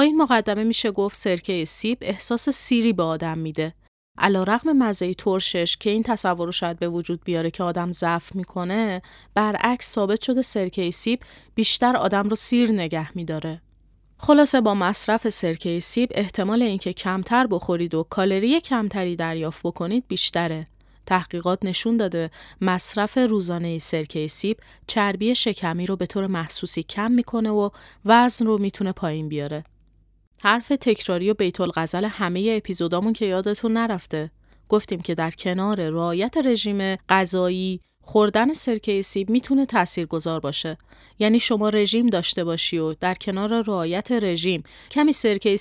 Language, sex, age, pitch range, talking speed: Persian, female, 30-49, 175-225 Hz, 140 wpm